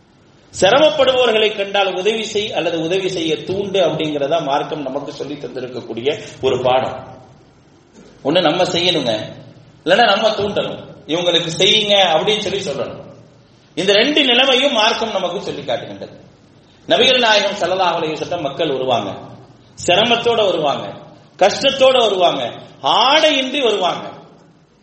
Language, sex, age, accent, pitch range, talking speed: English, male, 30-49, Indian, 170-235 Hz, 100 wpm